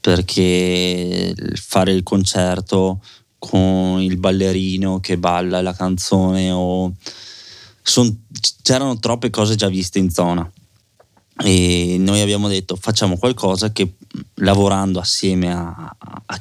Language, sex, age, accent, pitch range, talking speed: Italian, male, 20-39, native, 95-110 Hz, 115 wpm